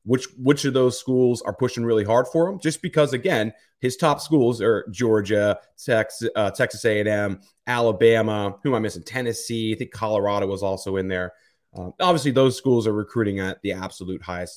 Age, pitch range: 30-49, 100-135 Hz